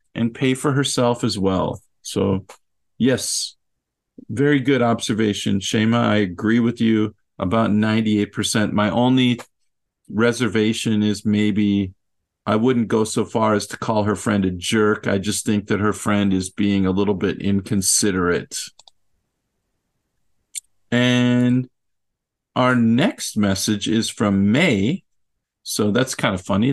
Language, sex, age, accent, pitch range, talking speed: English, male, 50-69, American, 105-125 Hz, 130 wpm